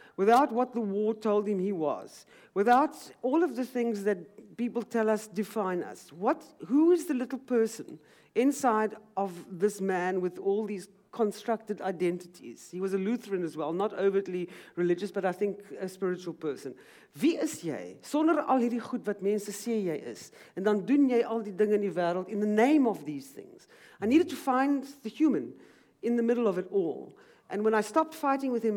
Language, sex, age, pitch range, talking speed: Dutch, female, 50-69, 190-245 Hz, 195 wpm